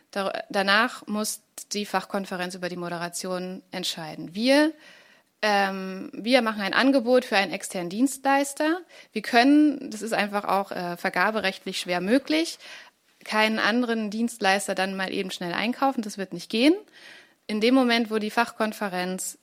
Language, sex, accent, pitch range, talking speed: German, female, German, 190-245 Hz, 145 wpm